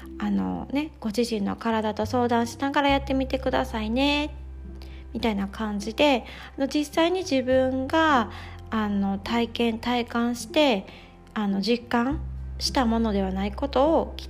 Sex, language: female, Japanese